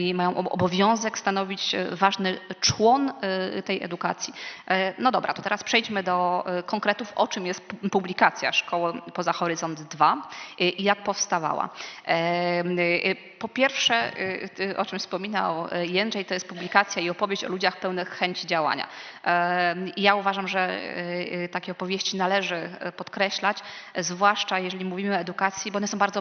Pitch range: 180-200 Hz